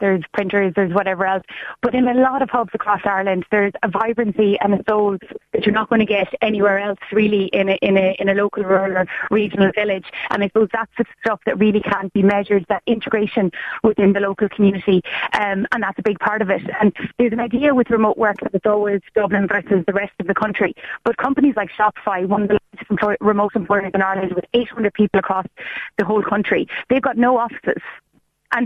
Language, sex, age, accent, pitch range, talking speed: English, female, 30-49, Irish, 200-230 Hz, 210 wpm